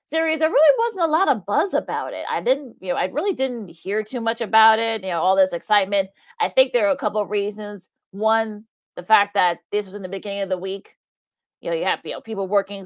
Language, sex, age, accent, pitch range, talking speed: English, female, 30-49, American, 190-235 Hz, 255 wpm